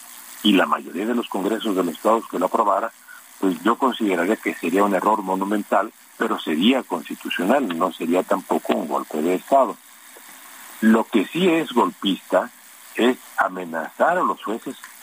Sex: male